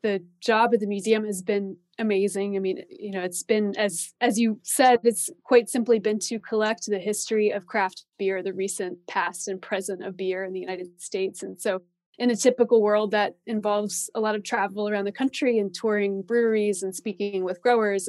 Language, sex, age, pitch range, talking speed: English, female, 20-39, 190-220 Hz, 205 wpm